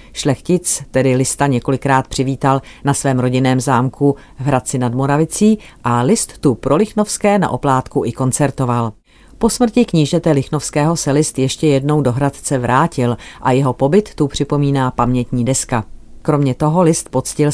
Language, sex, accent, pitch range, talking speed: Czech, female, native, 130-160 Hz, 150 wpm